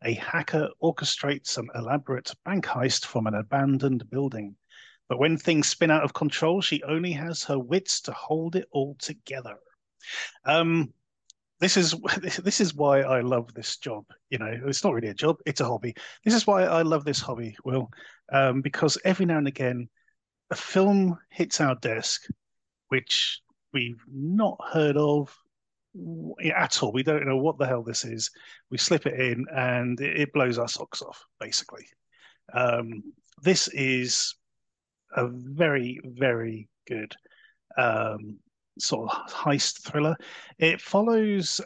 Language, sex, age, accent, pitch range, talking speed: English, male, 30-49, British, 125-160 Hz, 155 wpm